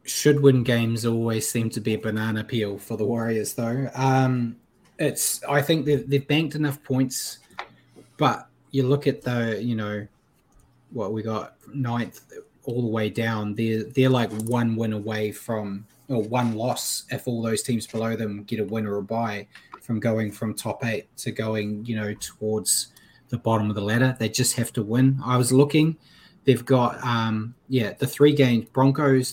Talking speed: 185 wpm